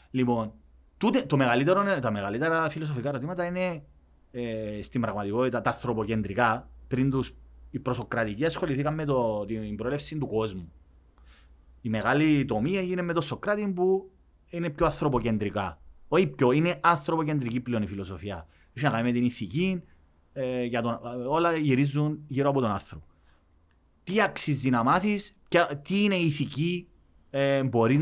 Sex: male